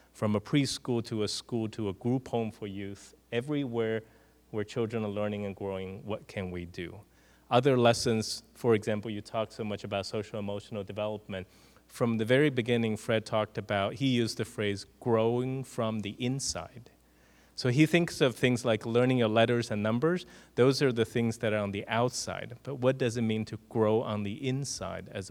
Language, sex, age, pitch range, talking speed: English, male, 30-49, 100-120 Hz, 190 wpm